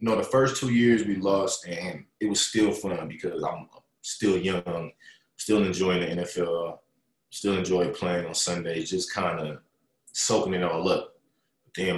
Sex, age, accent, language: male, 20-39, American, English